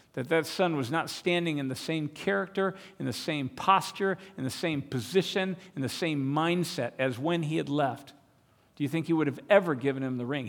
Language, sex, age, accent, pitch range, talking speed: English, male, 50-69, American, 140-180 Hz, 215 wpm